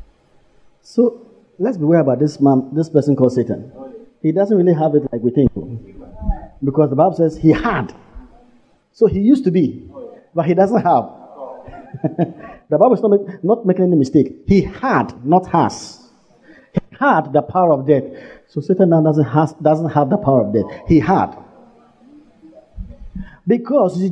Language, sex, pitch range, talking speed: English, male, 120-180 Hz, 165 wpm